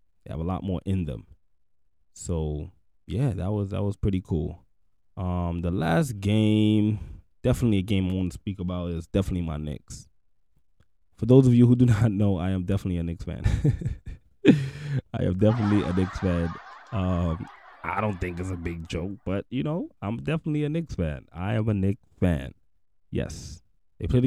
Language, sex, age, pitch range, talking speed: English, male, 20-39, 90-105 Hz, 180 wpm